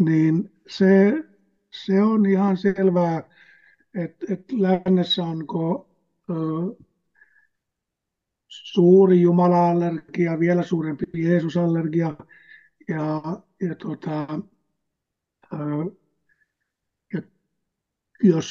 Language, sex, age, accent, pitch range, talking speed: Finnish, male, 60-79, native, 160-195 Hz, 60 wpm